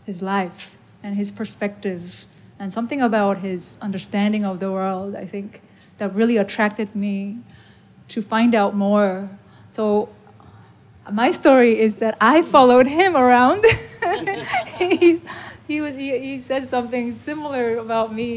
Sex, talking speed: female, 135 wpm